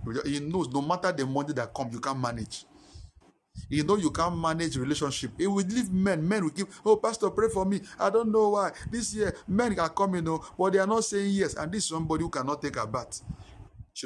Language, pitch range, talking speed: English, 130-190 Hz, 240 wpm